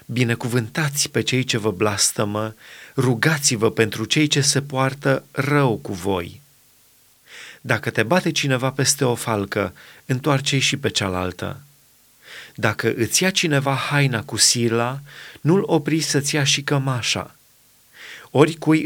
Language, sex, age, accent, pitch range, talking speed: Romanian, male, 30-49, native, 115-150 Hz, 125 wpm